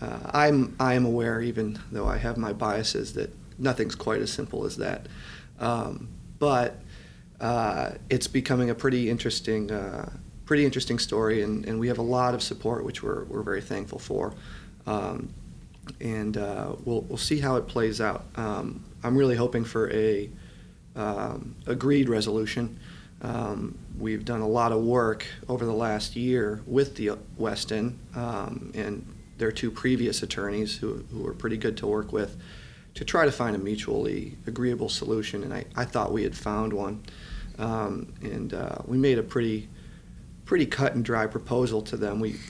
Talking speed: 170 wpm